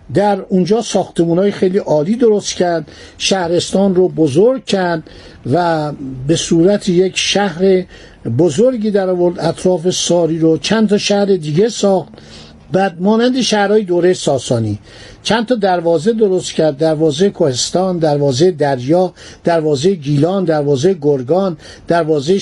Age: 50-69